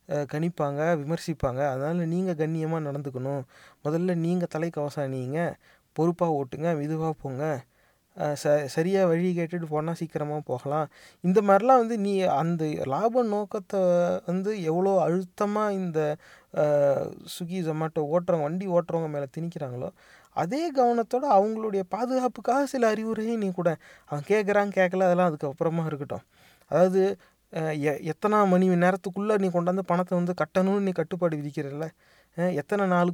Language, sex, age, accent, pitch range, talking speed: English, male, 30-49, Indian, 155-195 Hz, 120 wpm